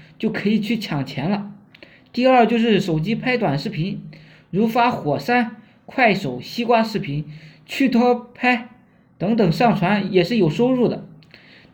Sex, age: male, 20-39